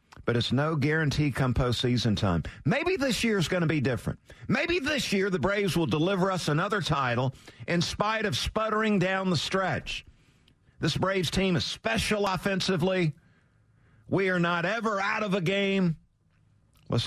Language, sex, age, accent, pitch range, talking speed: English, male, 50-69, American, 120-175 Hz, 165 wpm